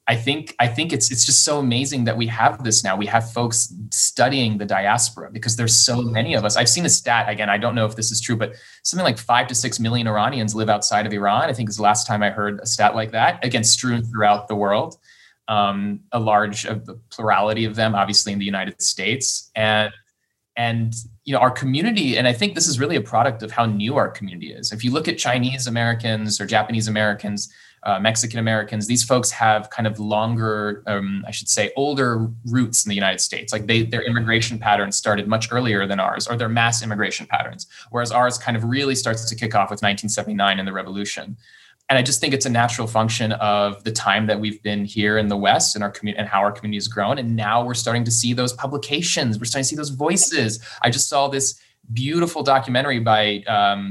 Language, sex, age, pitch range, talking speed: English, male, 20-39, 105-120 Hz, 230 wpm